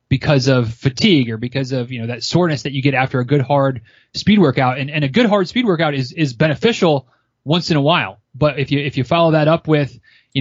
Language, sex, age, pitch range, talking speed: English, male, 30-49, 125-155 Hz, 250 wpm